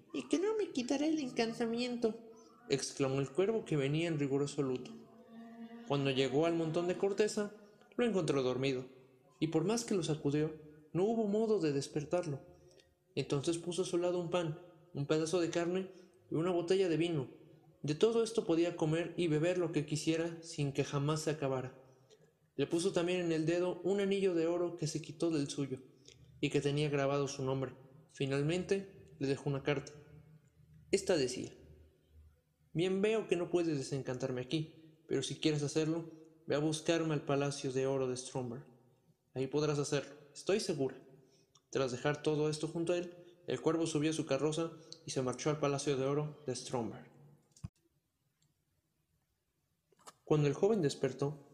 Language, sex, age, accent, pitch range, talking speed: Spanish, male, 30-49, Mexican, 135-175 Hz, 170 wpm